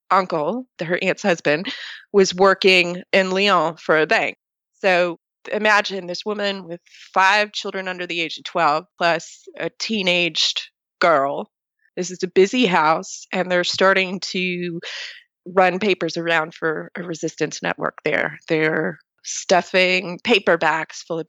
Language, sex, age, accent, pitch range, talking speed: English, female, 20-39, American, 170-215 Hz, 140 wpm